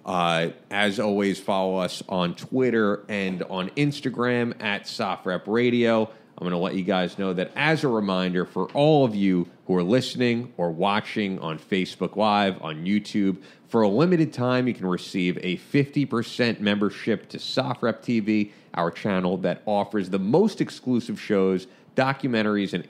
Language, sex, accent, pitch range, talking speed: English, male, American, 90-120 Hz, 155 wpm